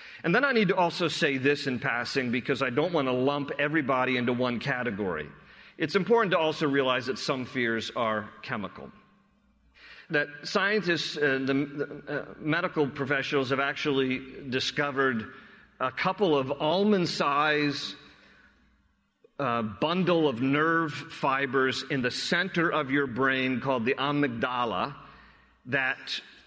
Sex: male